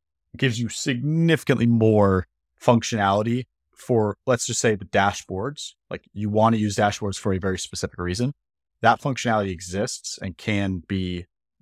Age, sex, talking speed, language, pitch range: 30-49, male, 145 wpm, English, 95-115 Hz